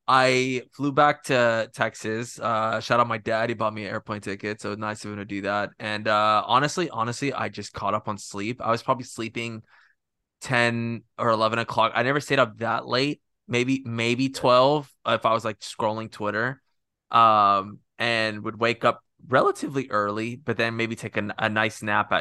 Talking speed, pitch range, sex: 190 wpm, 105-125 Hz, male